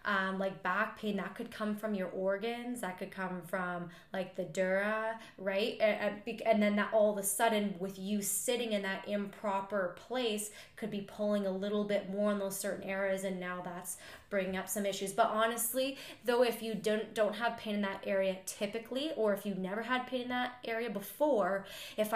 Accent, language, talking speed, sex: American, English, 205 wpm, female